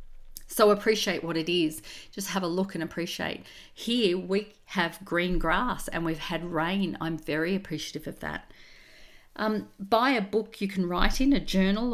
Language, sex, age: English, female, 40-59